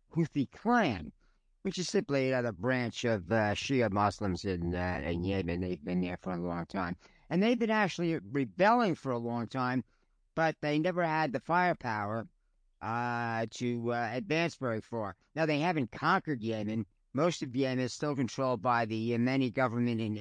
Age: 50-69